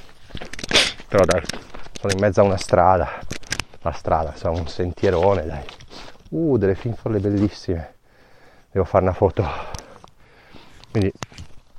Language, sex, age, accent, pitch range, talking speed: Italian, male, 40-59, native, 90-105 Hz, 120 wpm